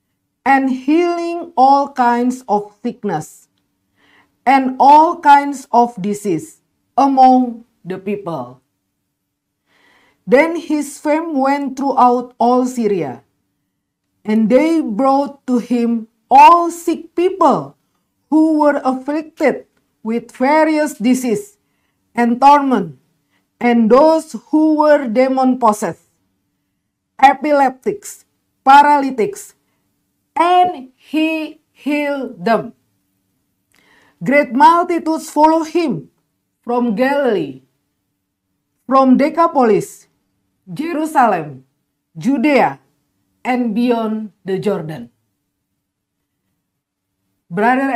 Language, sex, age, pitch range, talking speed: English, female, 40-59, 205-295 Hz, 80 wpm